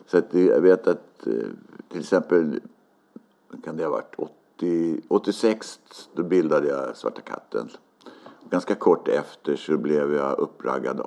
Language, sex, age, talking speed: Swedish, male, 60-79, 135 wpm